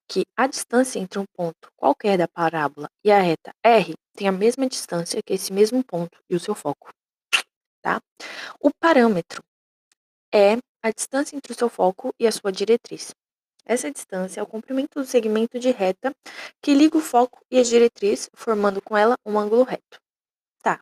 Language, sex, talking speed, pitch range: Portuguese, female, 180 wpm, 195-255 Hz